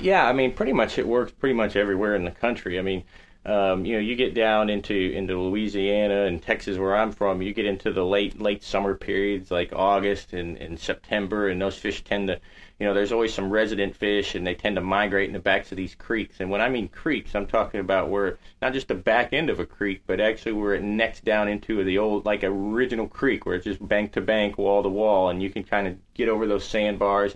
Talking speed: 245 wpm